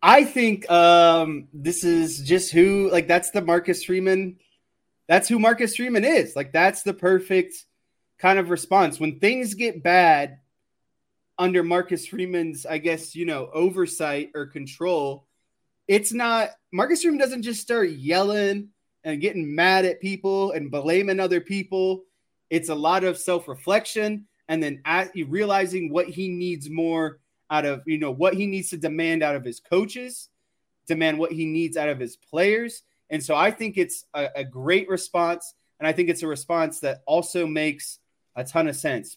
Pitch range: 155-190 Hz